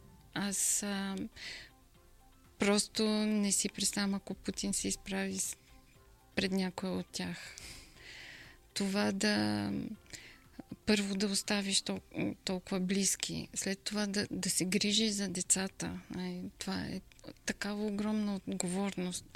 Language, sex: Bulgarian, female